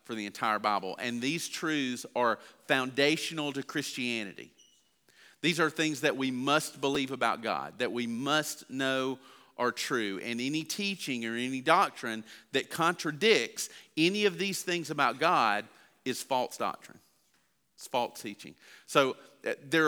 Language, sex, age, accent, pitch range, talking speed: English, male, 40-59, American, 120-160 Hz, 150 wpm